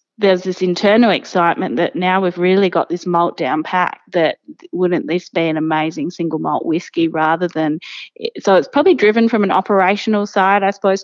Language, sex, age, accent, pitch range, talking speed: English, female, 20-39, Australian, 170-195 Hz, 185 wpm